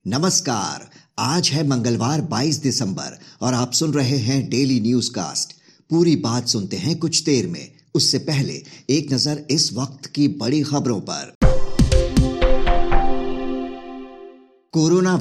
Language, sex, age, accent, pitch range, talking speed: Hindi, male, 50-69, native, 120-150 Hz, 125 wpm